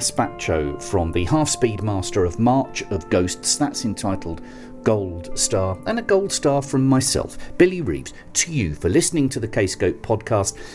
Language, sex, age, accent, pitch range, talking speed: English, male, 40-59, British, 100-135 Hz, 165 wpm